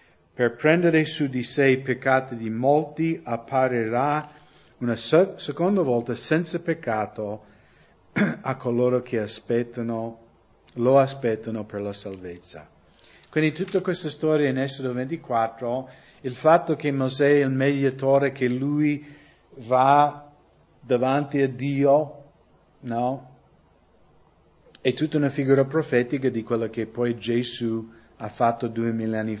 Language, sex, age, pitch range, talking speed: English, male, 50-69, 115-145 Hz, 120 wpm